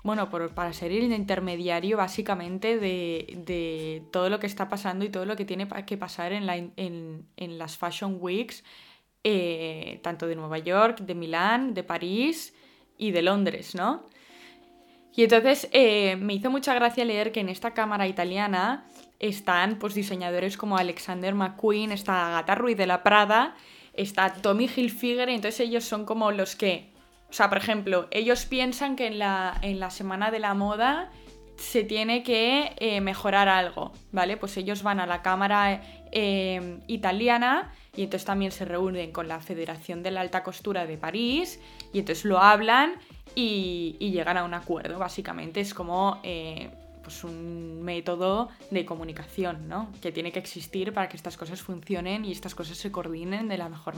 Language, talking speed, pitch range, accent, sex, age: Spanish, 175 wpm, 175-215 Hz, Spanish, female, 20-39